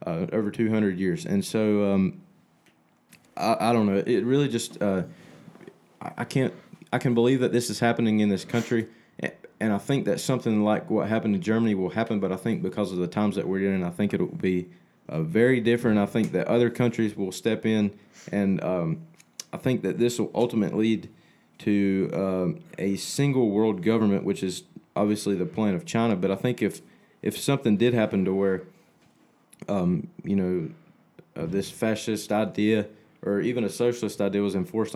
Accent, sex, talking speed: American, male, 190 wpm